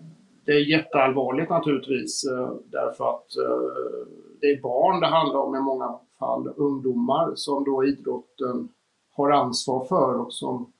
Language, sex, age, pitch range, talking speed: Swedish, male, 50-69, 130-155 Hz, 135 wpm